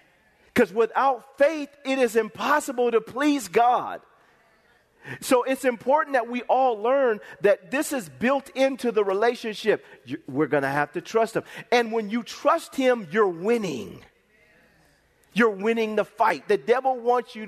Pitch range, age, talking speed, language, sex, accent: 190-260 Hz, 40-59, 155 wpm, English, male, American